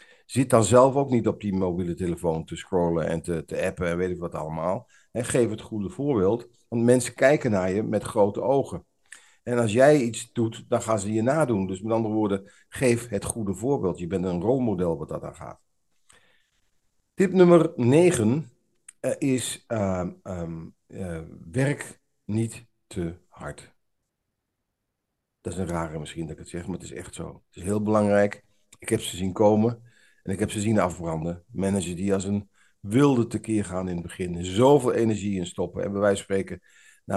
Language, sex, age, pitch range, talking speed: Dutch, male, 50-69, 95-115 Hz, 190 wpm